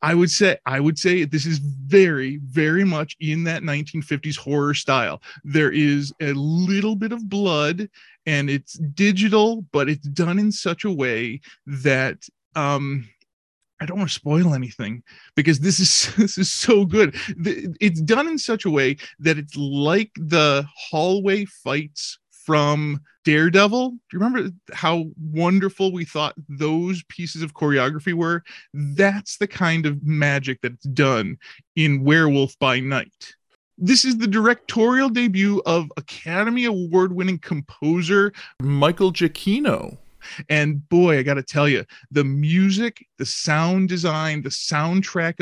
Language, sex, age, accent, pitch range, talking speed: English, male, 20-39, American, 145-190 Hz, 145 wpm